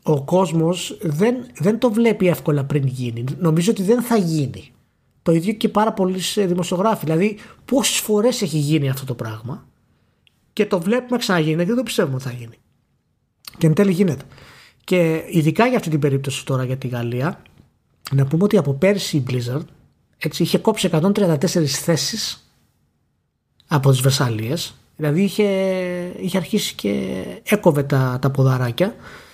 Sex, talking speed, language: male, 160 wpm, Greek